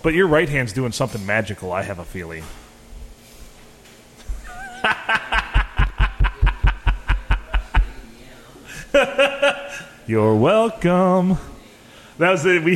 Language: English